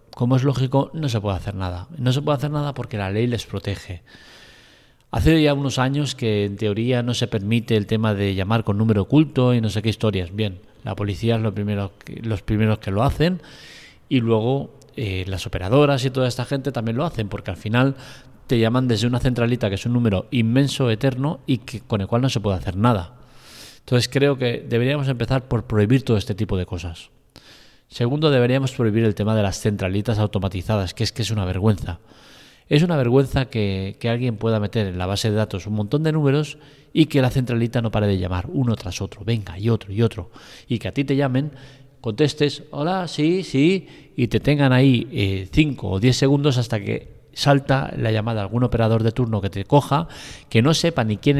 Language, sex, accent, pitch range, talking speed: Spanish, male, Spanish, 105-135 Hz, 215 wpm